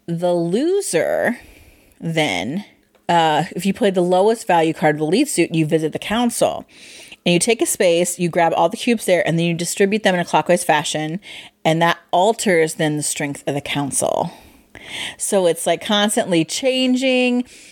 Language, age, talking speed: English, 30-49, 180 wpm